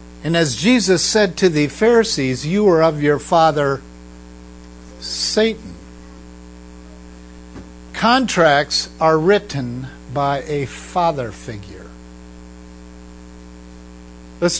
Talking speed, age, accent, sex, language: 85 wpm, 50-69, American, male, English